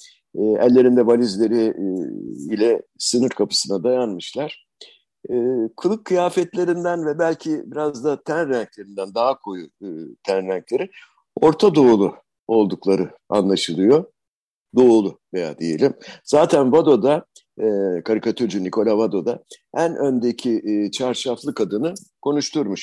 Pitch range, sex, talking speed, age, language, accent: 115-175 Hz, male, 90 wpm, 60-79, Turkish, native